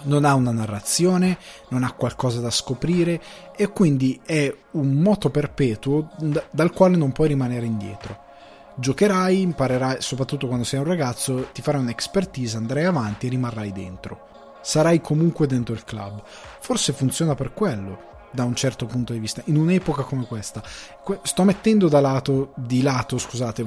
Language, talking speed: Italian, 155 wpm